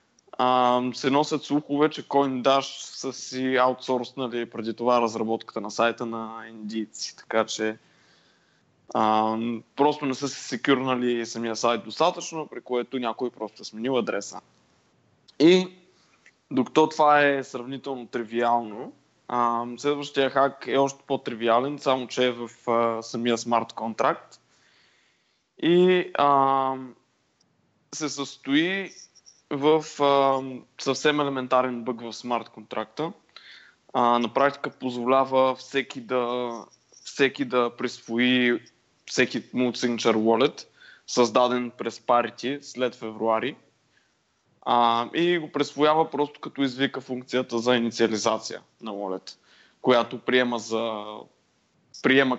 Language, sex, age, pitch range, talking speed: Bulgarian, male, 20-39, 115-140 Hz, 110 wpm